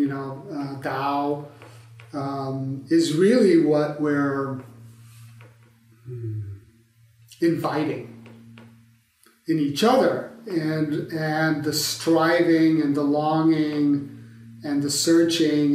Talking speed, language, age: 90 wpm, English, 40-59